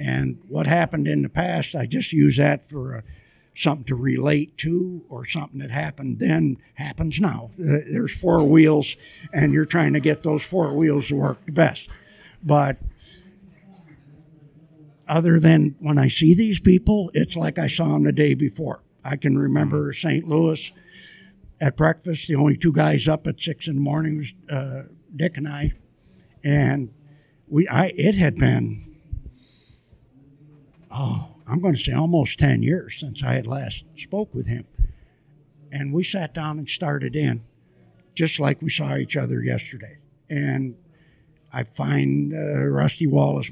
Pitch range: 135-160 Hz